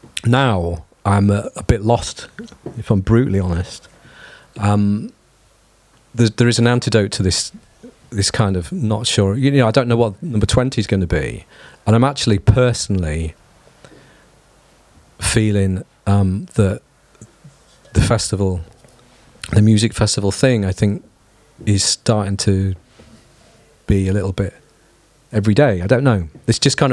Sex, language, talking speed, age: male, English, 145 wpm, 40-59